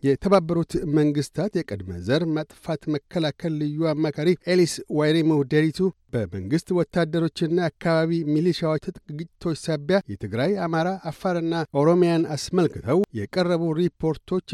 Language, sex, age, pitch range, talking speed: Amharic, male, 60-79, 150-170 Hz, 105 wpm